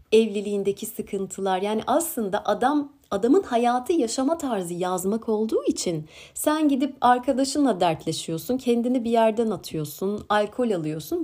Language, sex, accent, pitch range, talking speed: Turkish, female, native, 190-255 Hz, 120 wpm